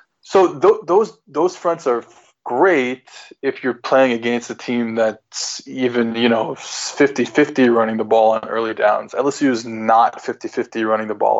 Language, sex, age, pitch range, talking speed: English, male, 20-39, 115-140 Hz, 165 wpm